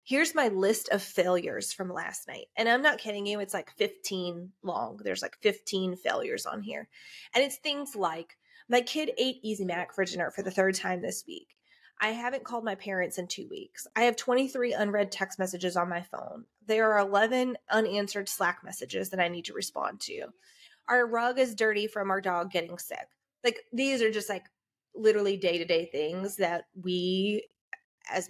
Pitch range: 190-260 Hz